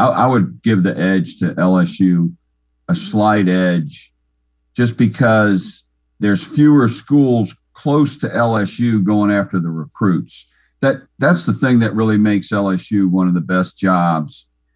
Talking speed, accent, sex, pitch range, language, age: 140 wpm, American, male, 85-110 Hz, English, 50-69